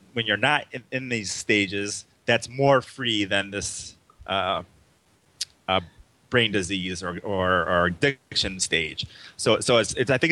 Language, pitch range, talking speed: English, 100-135 Hz, 155 wpm